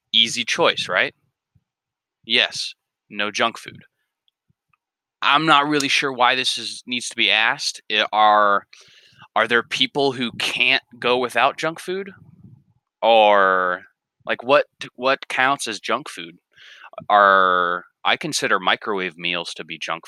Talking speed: 130 wpm